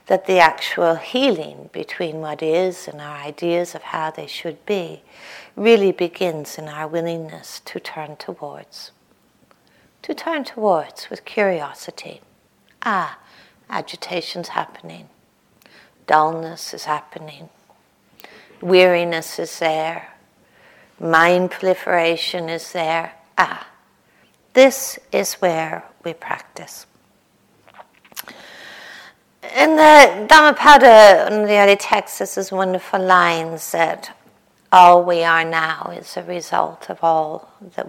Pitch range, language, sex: 165-205 Hz, English, female